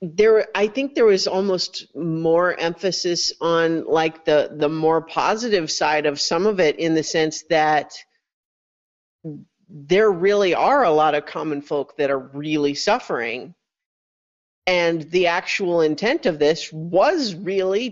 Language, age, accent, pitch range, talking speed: English, 40-59, American, 150-200 Hz, 145 wpm